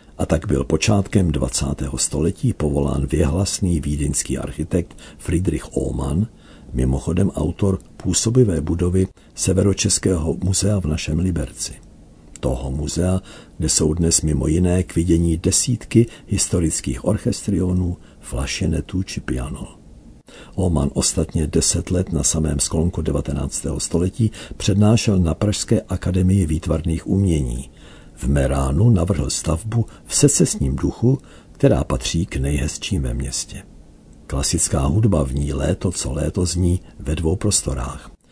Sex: male